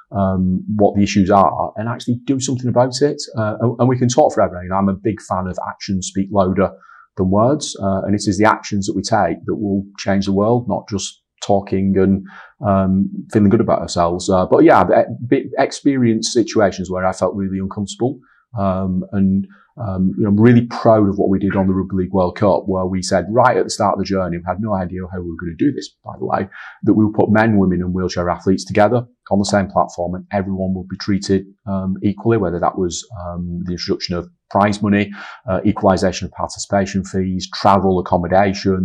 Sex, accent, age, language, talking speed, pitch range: male, British, 30-49, English, 215 wpm, 95-105 Hz